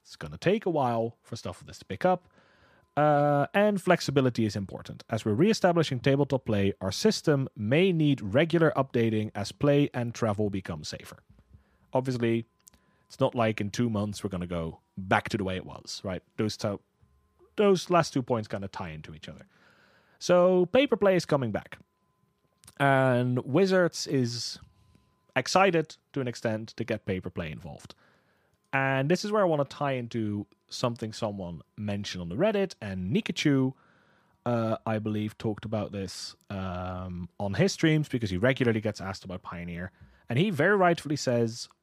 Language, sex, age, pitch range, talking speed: English, male, 30-49, 105-145 Hz, 175 wpm